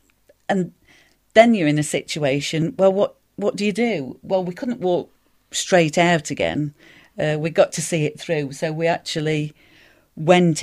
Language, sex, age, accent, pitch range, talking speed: English, female, 40-59, British, 140-175 Hz, 170 wpm